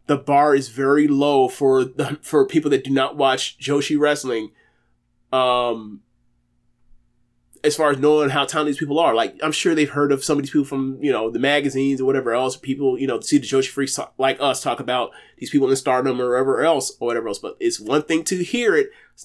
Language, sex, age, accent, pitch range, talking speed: English, male, 30-49, American, 135-165 Hz, 230 wpm